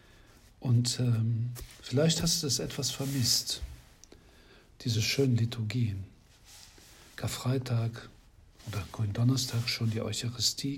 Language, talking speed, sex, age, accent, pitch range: German, 95 wpm, male, 60-79, German, 100-125 Hz